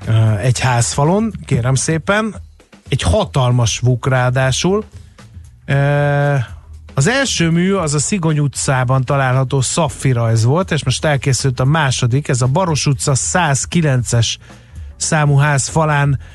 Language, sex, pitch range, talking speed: Hungarian, male, 125-150 Hz, 115 wpm